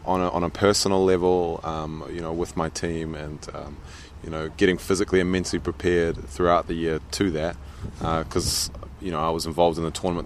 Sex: male